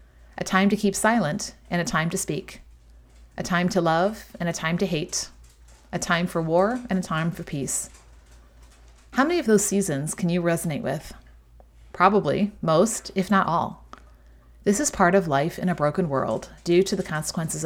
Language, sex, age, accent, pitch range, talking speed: English, female, 30-49, American, 135-205 Hz, 185 wpm